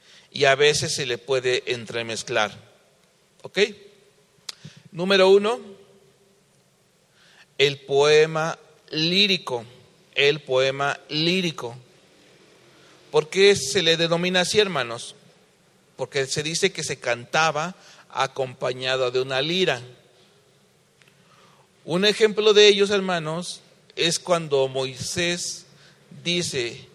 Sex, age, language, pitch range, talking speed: male, 40-59, English, 140-185 Hz, 95 wpm